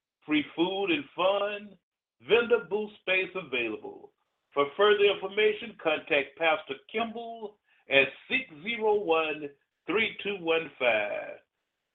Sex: male